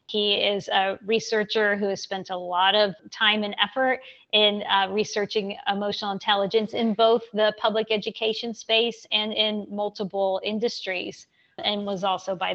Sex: female